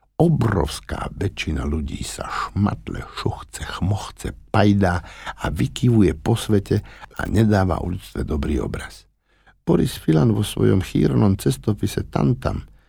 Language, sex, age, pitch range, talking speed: Slovak, male, 60-79, 75-115 Hz, 110 wpm